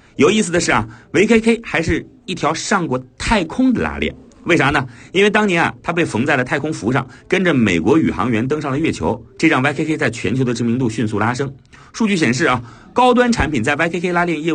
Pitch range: 115-180 Hz